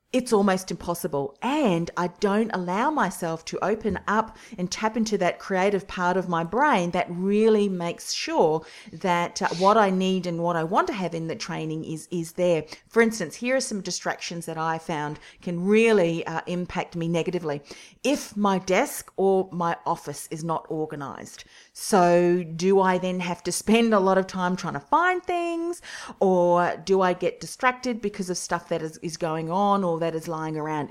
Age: 40-59